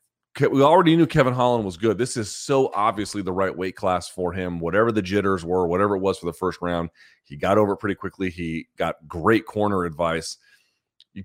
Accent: American